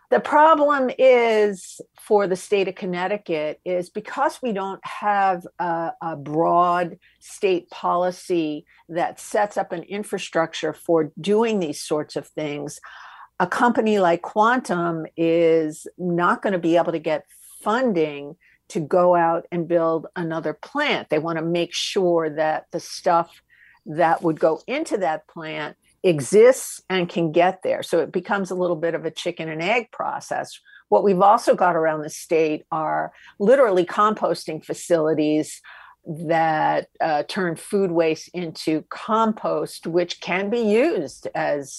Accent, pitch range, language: American, 160-200 Hz, English